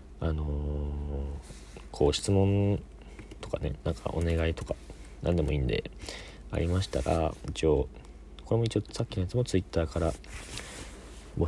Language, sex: Japanese, male